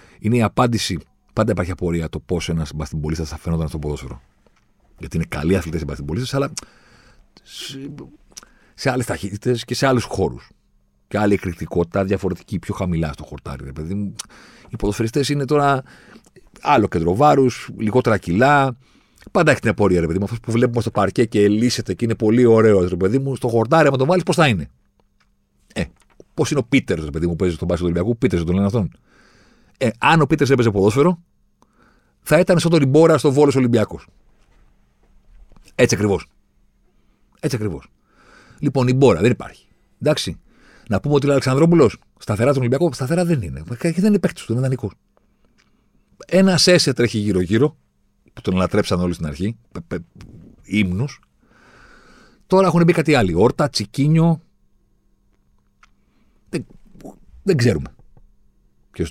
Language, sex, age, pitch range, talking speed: Greek, male, 40-59, 85-135 Hz, 155 wpm